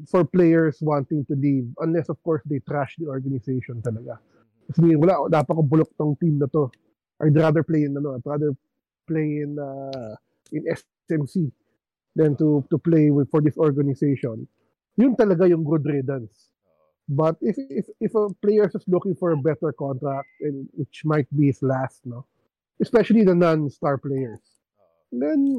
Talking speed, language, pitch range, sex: 130 wpm, English, 145-190 Hz, male